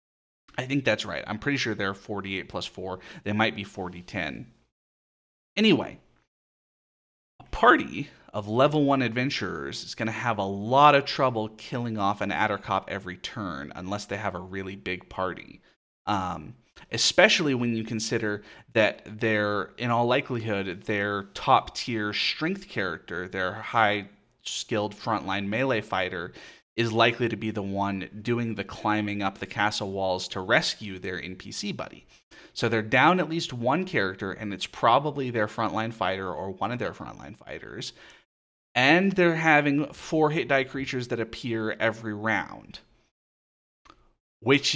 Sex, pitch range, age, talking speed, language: male, 100-130 Hz, 30-49, 155 wpm, English